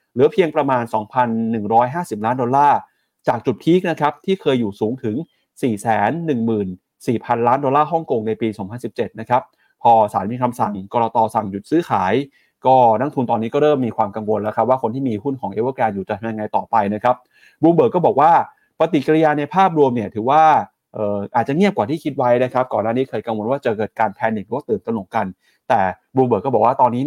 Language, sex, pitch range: Thai, male, 115-155 Hz